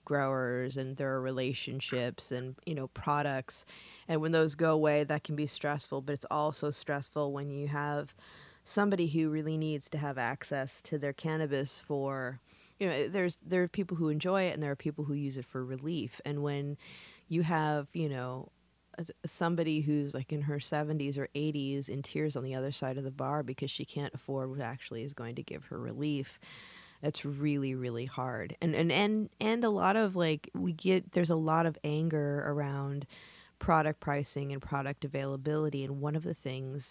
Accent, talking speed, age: American, 190 wpm, 20-39